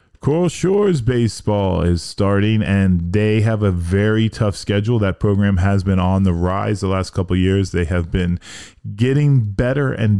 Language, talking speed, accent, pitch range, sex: English, 175 wpm, American, 100-115 Hz, male